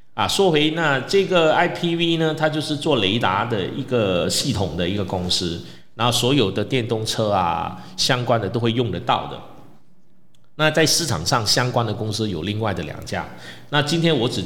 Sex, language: male, Chinese